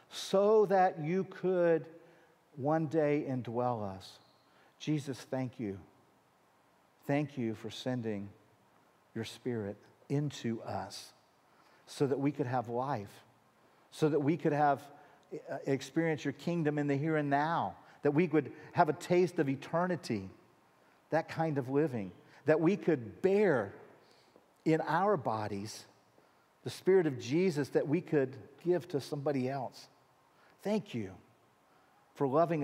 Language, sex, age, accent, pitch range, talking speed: English, male, 50-69, American, 115-160 Hz, 135 wpm